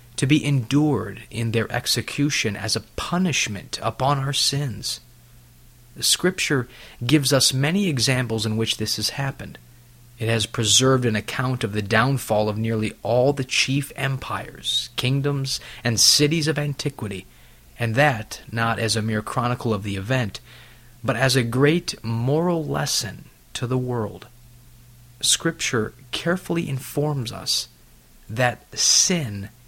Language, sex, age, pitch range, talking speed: English, male, 30-49, 110-135 Hz, 135 wpm